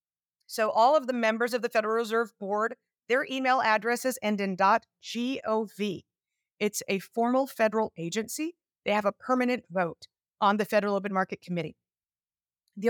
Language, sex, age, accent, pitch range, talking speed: English, female, 30-49, American, 190-235 Hz, 155 wpm